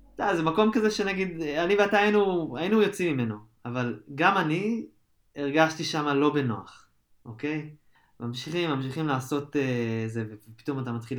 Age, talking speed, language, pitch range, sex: 20-39, 145 wpm, Hebrew, 115-155 Hz, male